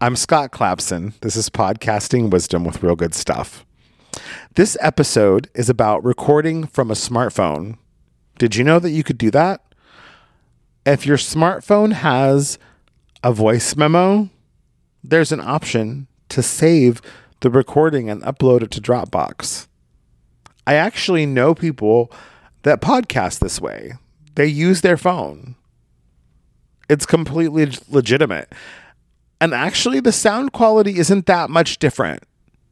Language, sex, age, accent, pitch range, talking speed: English, male, 40-59, American, 115-165 Hz, 130 wpm